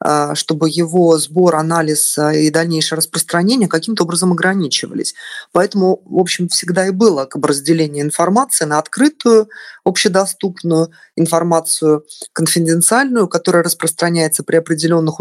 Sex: female